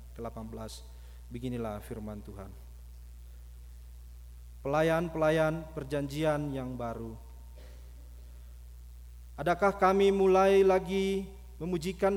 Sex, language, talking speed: male, Malay, 65 wpm